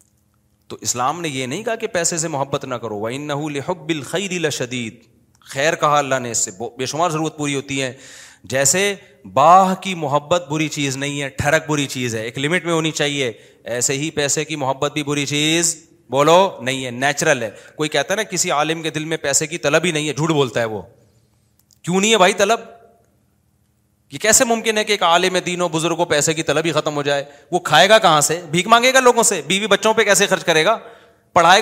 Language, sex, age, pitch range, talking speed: Urdu, male, 30-49, 140-185 Hz, 220 wpm